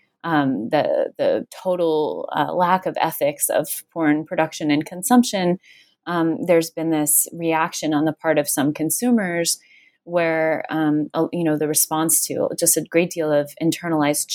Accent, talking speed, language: American, 160 wpm, English